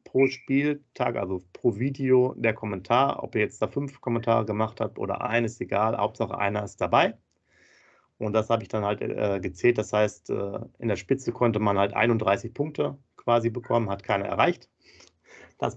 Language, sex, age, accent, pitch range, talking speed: German, male, 40-59, German, 110-135 Hz, 175 wpm